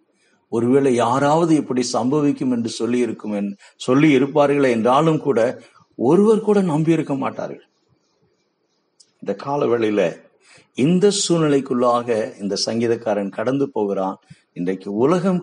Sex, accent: male, native